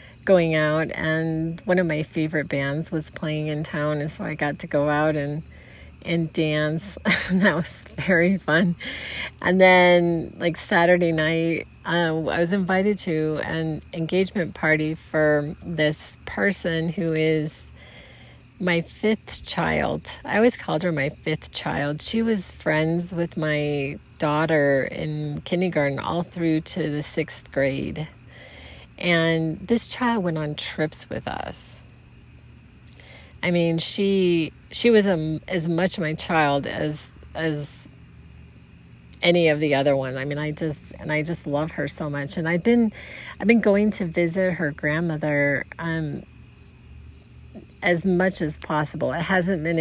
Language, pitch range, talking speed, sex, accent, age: English, 150-180 Hz, 145 wpm, female, American, 30-49